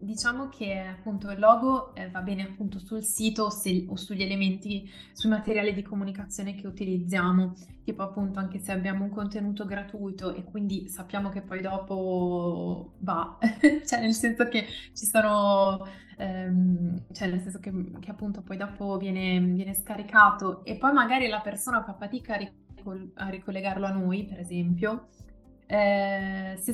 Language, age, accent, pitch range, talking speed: Italian, 20-39, native, 190-215 Hz, 155 wpm